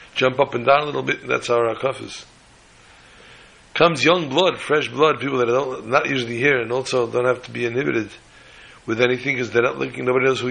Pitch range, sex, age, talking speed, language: 120-140 Hz, male, 60-79, 215 wpm, English